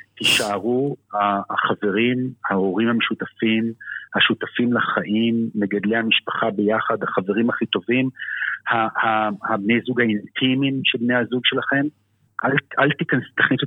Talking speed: 95 wpm